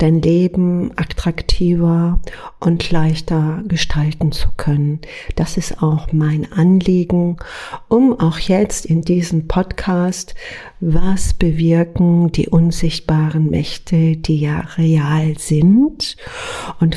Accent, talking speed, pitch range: German, 105 wpm, 160-200 Hz